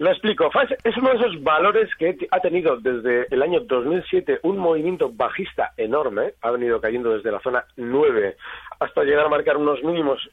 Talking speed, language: 180 wpm, Spanish